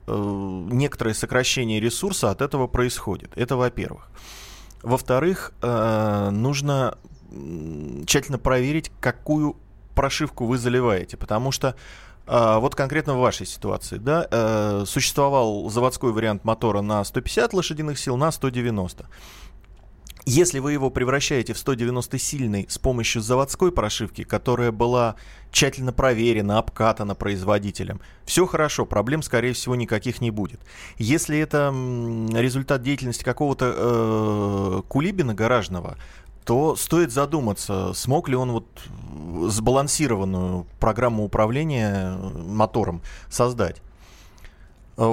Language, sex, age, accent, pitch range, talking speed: Russian, male, 20-39, native, 105-135 Hz, 105 wpm